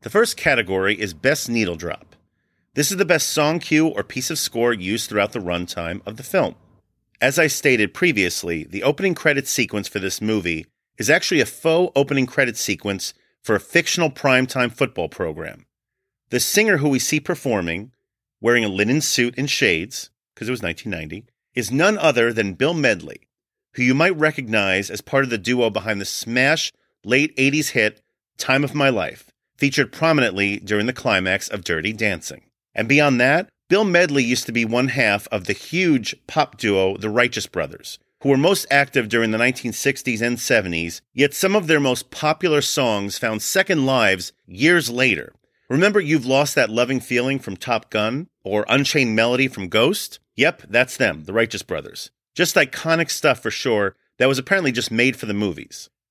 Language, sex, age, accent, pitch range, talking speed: English, male, 40-59, American, 105-145 Hz, 180 wpm